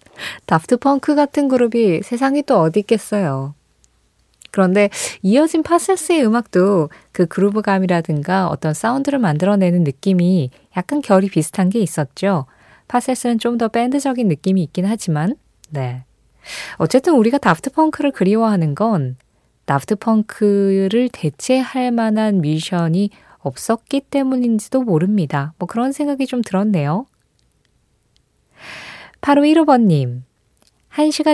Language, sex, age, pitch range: Korean, female, 20-39, 160-235 Hz